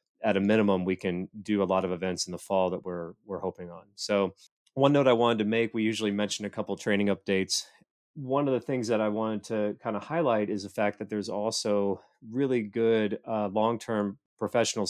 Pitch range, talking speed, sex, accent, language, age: 100-110 Hz, 220 wpm, male, American, English, 30-49